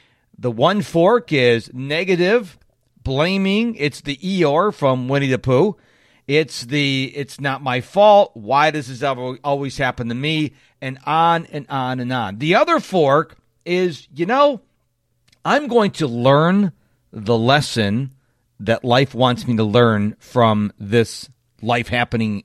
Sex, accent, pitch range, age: male, American, 125-185 Hz, 40-59